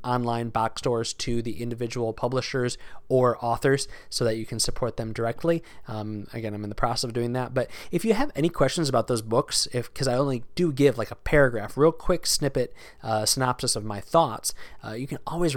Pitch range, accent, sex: 110-130 Hz, American, male